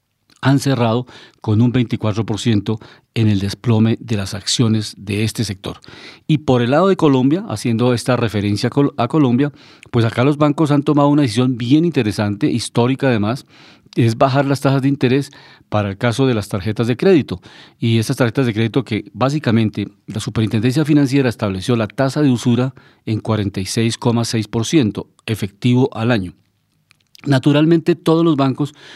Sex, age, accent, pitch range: male, 40-59, Colombian, 110-135 Hz